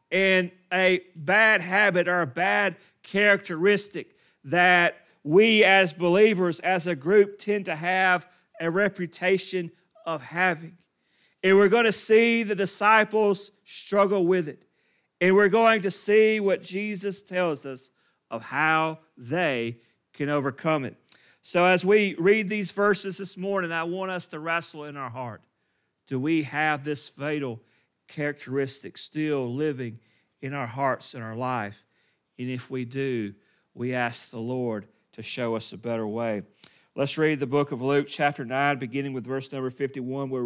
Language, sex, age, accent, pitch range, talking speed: English, male, 40-59, American, 135-185 Hz, 155 wpm